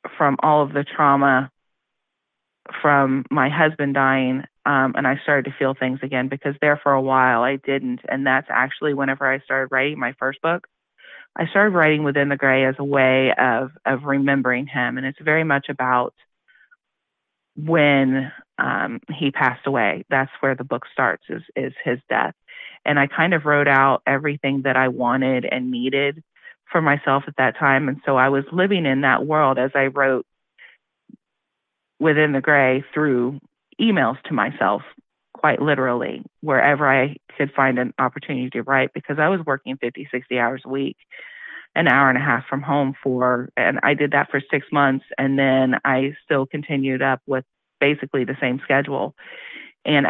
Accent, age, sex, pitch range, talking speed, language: American, 30-49, female, 130-145 Hz, 175 wpm, English